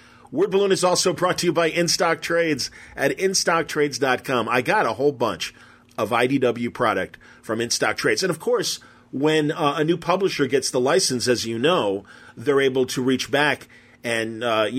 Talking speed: 180 wpm